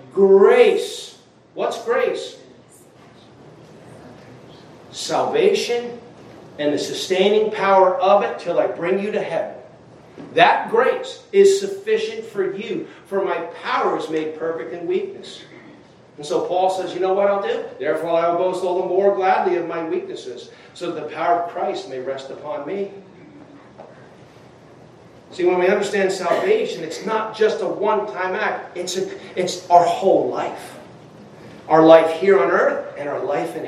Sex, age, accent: male, 40-59, American